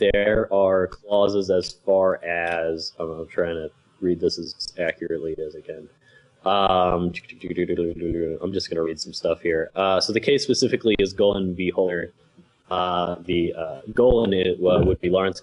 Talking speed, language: 170 wpm, English